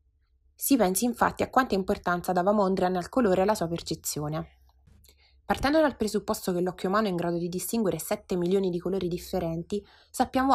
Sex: female